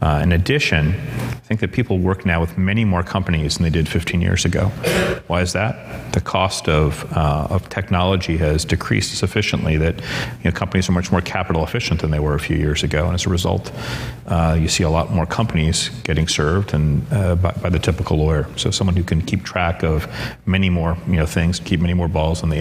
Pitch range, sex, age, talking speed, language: 80-100 Hz, male, 40-59, 225 wpm, English